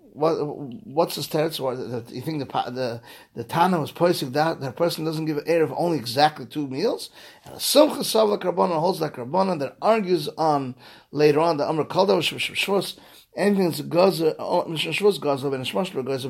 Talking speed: 210 wpm